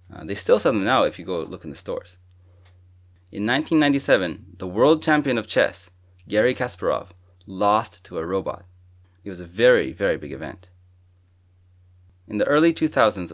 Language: English